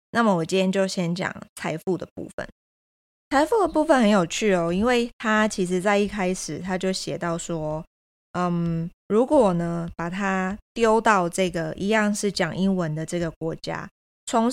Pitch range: 170-205 Hz